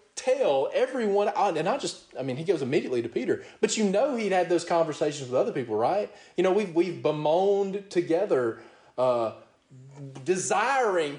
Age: 30-49